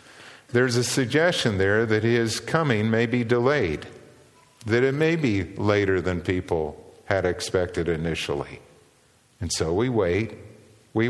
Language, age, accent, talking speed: English, 50-69, American, 135 wpm